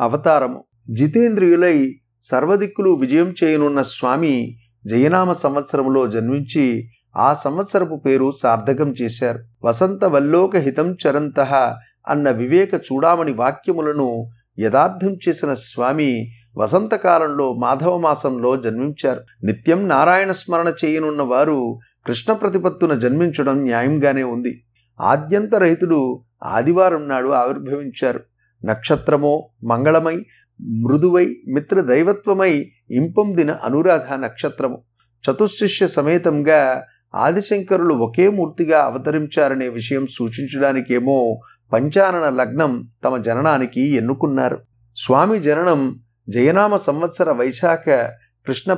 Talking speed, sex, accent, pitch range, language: 85 wpm, male, native, 125-175 Hz, Telugu